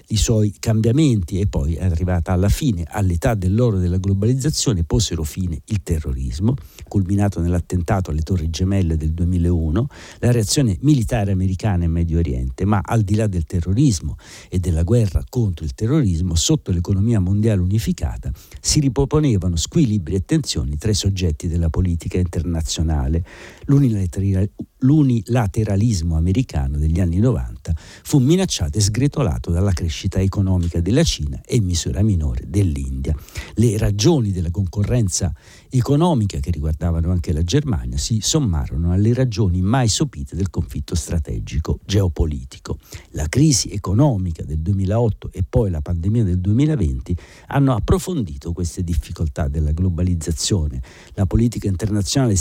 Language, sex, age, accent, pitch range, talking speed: Italian, male, 60-79, native, 85-115 Hz, 135 wpm